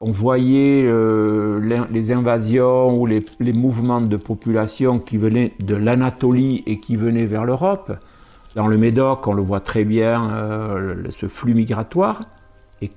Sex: male